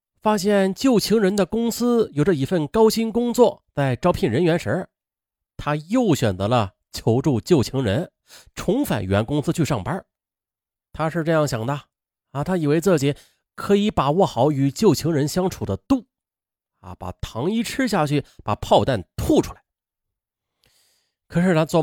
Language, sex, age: Chinese, male, 30-49